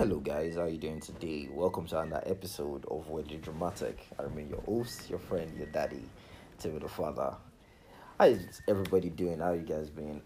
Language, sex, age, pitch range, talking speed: English, male, 30-49, 75-95 Hz, 205 wpm